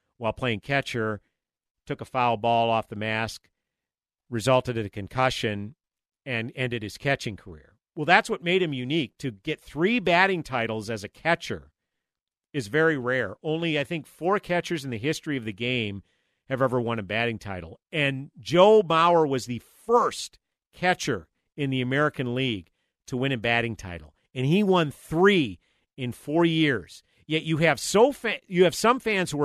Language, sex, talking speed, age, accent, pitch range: English, male, 175 wpm, 50-69, American, 125-210 Hz